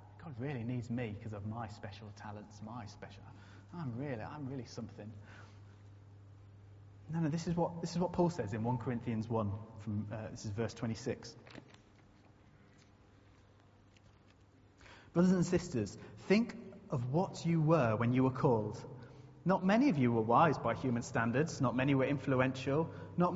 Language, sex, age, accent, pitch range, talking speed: English, male, 30-49, British, 110-170 Hz, 165 wpm